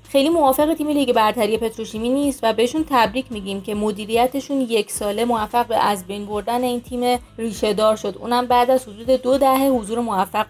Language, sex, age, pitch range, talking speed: Persian, female, 30-49, 225-280 Hz, 190 wpm